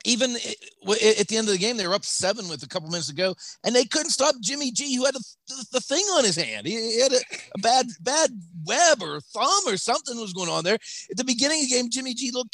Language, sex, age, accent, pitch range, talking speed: English, male, 40-59, American, 145-215 Hz, 265 wpm